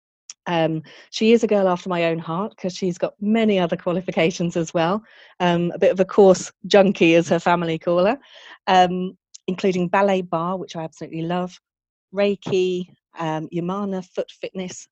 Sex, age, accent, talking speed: female, 40-59, British, 165 wpm